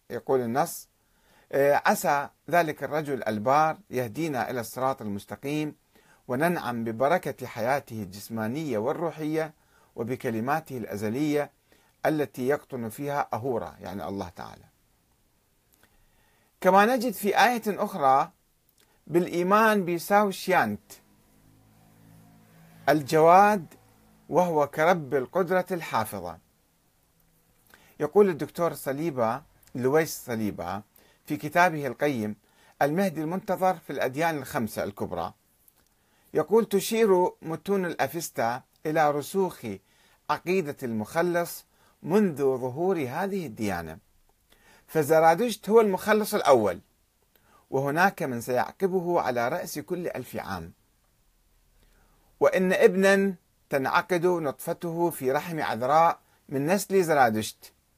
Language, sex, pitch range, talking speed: Arabic, male, 120-180 Hz, 85 wpm